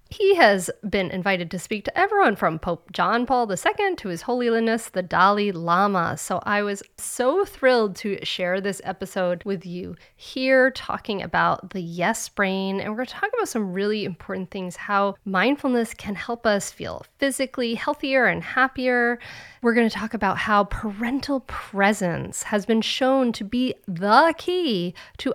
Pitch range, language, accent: 190-255 Hz, English, American